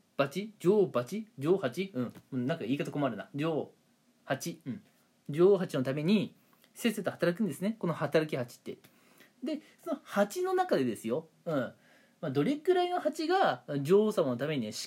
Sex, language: male, Japanese